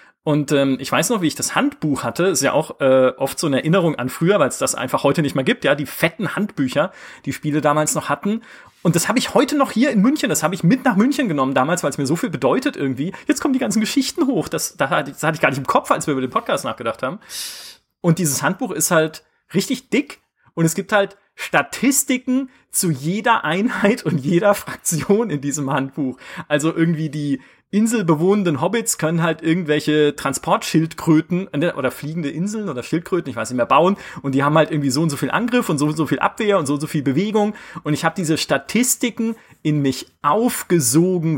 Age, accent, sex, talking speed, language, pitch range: 30-49, German, male, 220 wpm, German, 140-210 Hz